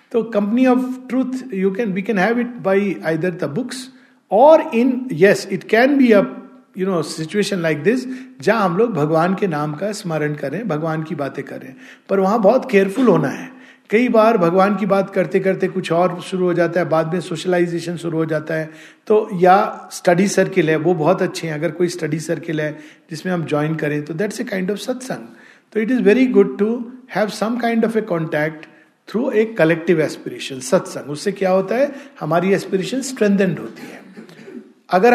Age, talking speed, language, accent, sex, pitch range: 50-69, 200 wpm, Hindi, native, male, 165-210 Hz